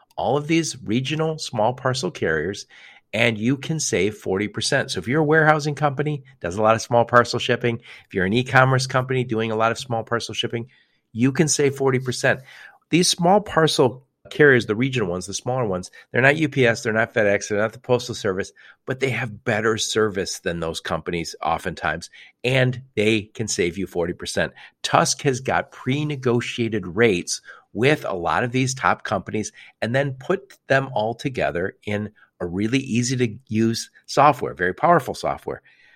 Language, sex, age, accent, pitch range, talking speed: English, male, 50-69, American, 110-135 Hz, 175 wpm